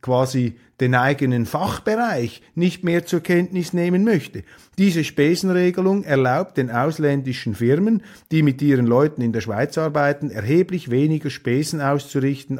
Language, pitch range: German, 130-180 Hz